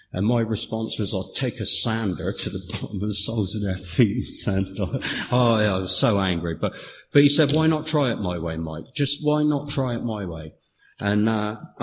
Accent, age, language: British, 50-69, English